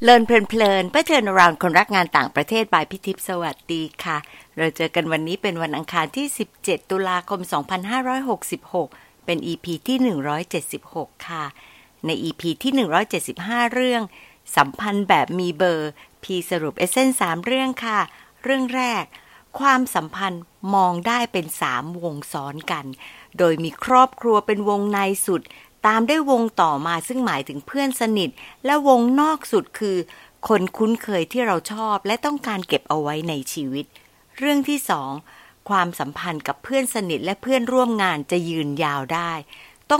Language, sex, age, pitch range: Thai, female, 60-79, 165-230 Hz